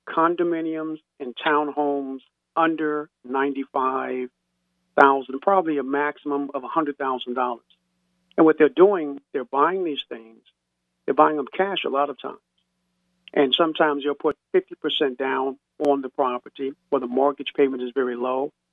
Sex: male